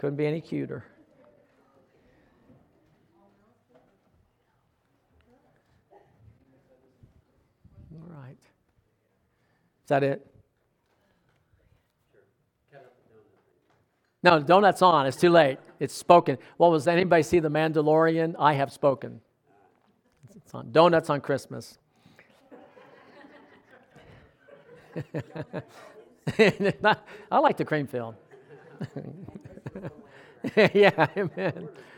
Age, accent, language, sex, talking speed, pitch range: 50-69, American, English, male, 75 wpm, 135-175 Hz